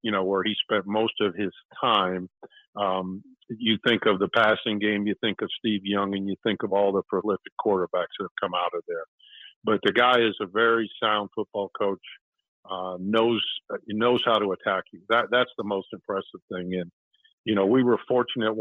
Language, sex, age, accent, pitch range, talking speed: English, male, 50-69, American, 95-115 Hz, 205 wpm